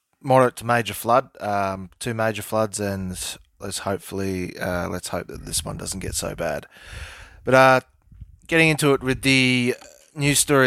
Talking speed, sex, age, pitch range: 170 wpm, male, 20-39, 95-115 Hz